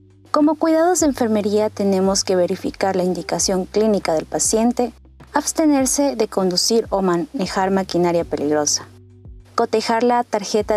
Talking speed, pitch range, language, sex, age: 125 wpm, 190-265 Hz, Spanish, female, 30-49